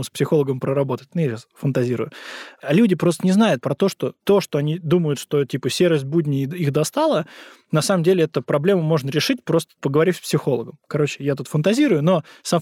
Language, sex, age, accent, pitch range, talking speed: Russian, male, 20-39, native, 135-170 Hz, 190 wpm